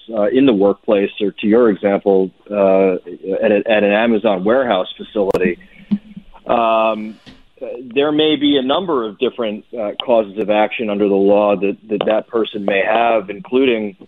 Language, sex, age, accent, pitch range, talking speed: English, male, 40-59, American, 100-115 Hz, 160 wpm